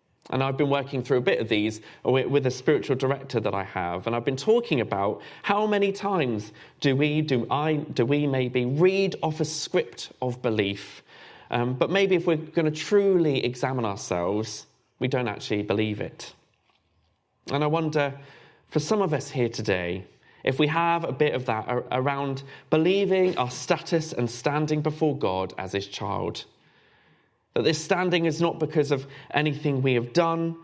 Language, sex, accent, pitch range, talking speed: English, male, British, 120-155 Hz, 175 wpm